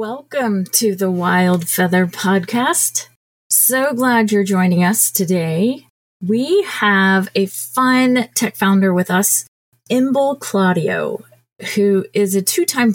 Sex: female